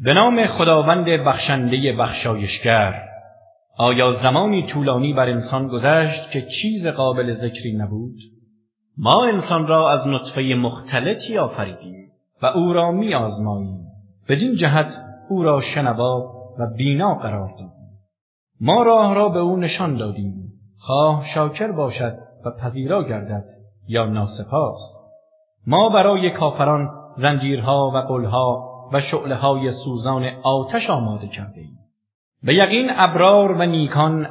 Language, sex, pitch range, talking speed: English, male, 115-175 Hz, 125 wpm